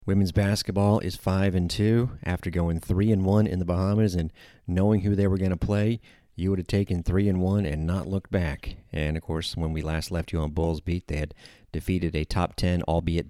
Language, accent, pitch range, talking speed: English, American, 85-100 Hz, 230 wpm